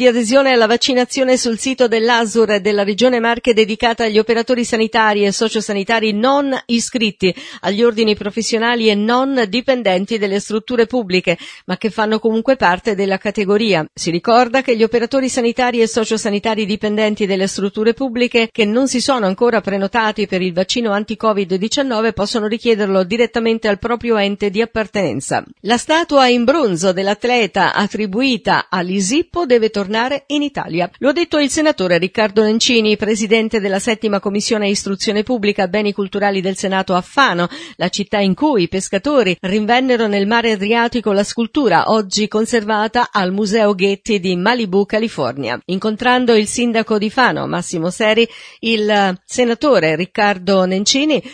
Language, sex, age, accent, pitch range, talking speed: Italian, female, 50-69, native, 200-240 Hz, 145 wpm